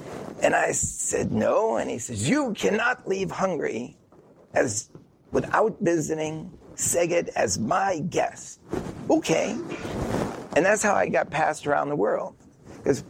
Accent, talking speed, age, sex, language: American, 135 wpm, 40-59, male, English